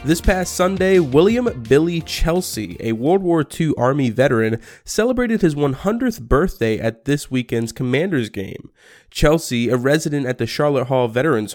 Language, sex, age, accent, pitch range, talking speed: English, male, 20-39, American, 115-155 Hz, 150 wpm